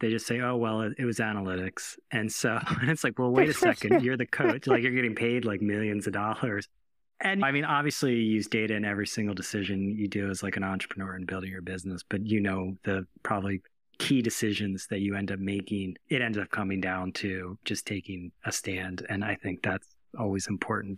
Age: 30-49